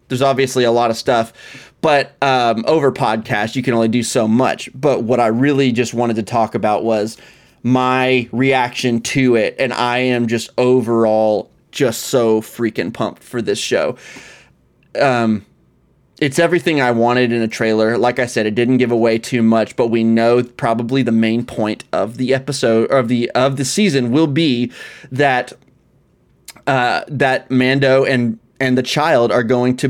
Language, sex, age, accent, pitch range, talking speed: English, male, 30-49, American, 115-135 Hz, 175 wpm